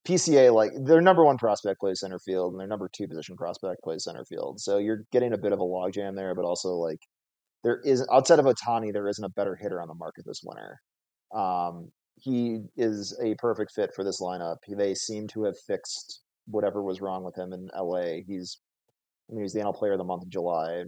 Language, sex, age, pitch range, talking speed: English, male, 30-49, 90-115 Hz, 225 wpm